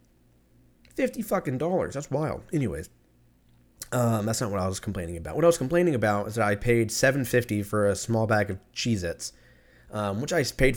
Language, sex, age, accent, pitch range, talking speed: English, male, 20-39, American, 105-125 Hz, 190 wpm